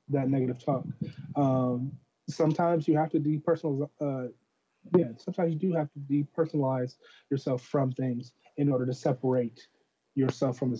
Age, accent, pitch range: 30-49, American, 130-150 Hz